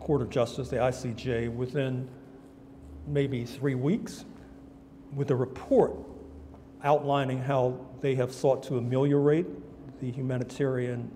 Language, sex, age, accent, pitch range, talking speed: English, male, 50-69, American, 125-145 Hz, 115 wpm